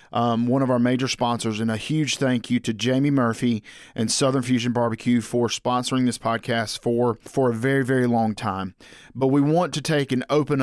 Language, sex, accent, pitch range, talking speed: English, male, American, 125-150 Hz, 205 wpm